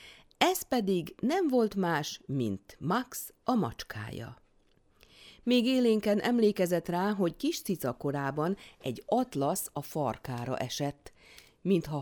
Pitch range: 130-200 Hz